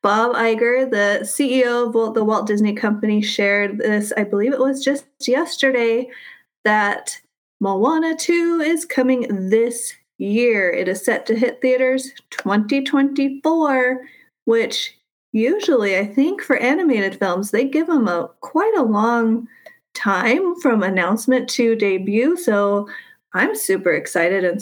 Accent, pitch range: American, 215-280 Hz